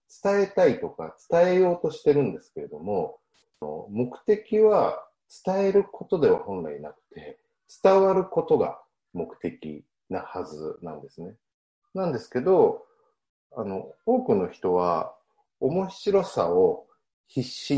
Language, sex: Japanese, male